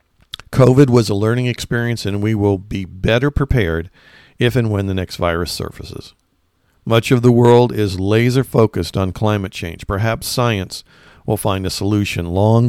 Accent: American